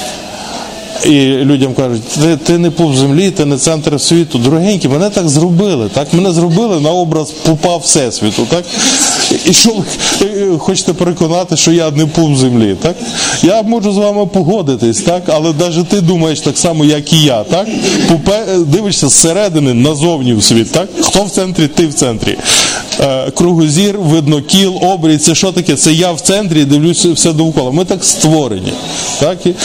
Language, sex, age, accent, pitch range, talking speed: Ukrainian, male, 20-39, native, 145-175 Hz, 160 wpm